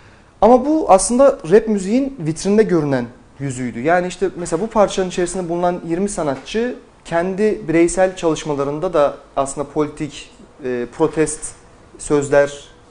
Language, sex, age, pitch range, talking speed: Turkish, male, 30-49, 145-200 Hz, 115 wpm